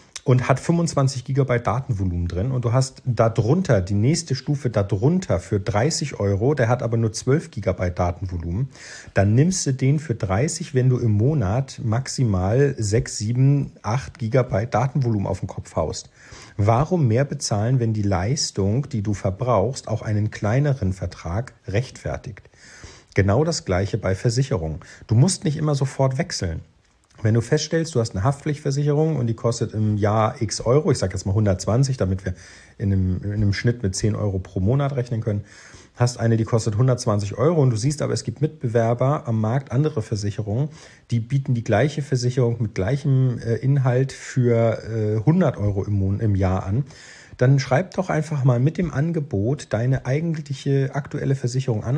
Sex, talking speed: male, 170 wpm